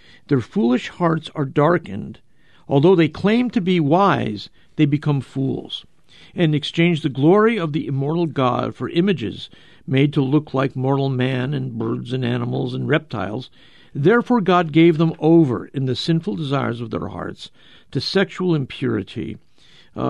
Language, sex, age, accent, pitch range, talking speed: English, male, 50-69, American, 125-160 Hz, 155 wpm